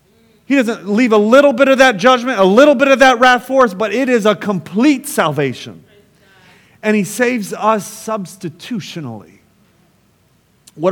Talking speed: 160 wpm